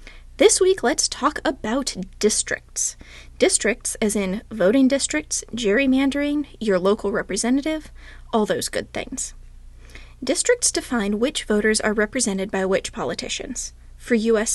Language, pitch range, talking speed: English, 205-275 Hz, 125 wpm